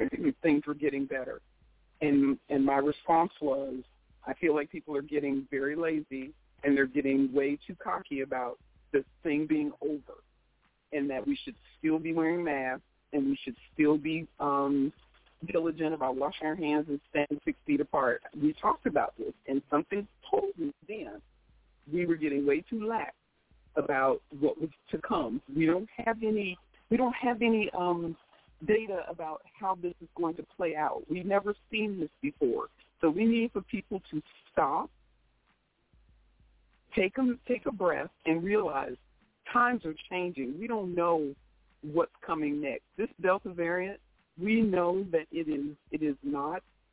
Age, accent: 50-69, American